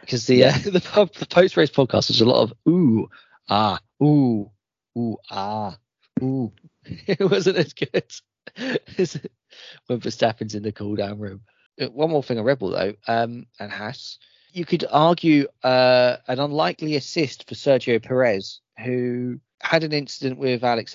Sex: male